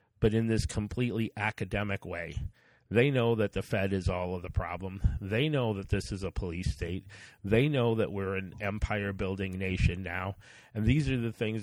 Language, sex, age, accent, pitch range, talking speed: English, male, 40-59, American, 100-115 Hz, 195 wpm